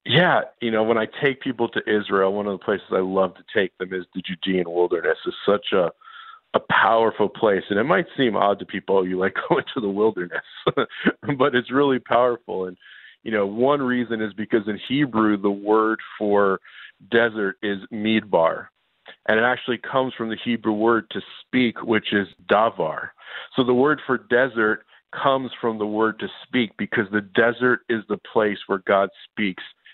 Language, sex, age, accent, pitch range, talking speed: English, male, 50-69, American, 105-125 Hz, 185 wpm